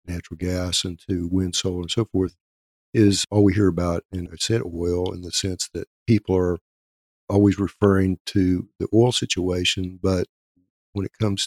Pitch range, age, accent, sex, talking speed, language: 90-105 Hz, 50-69, American, male, 180 wpm, English